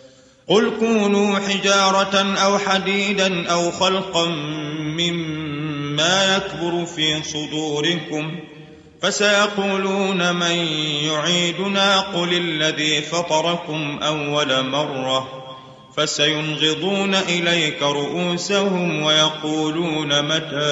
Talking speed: 70 wpm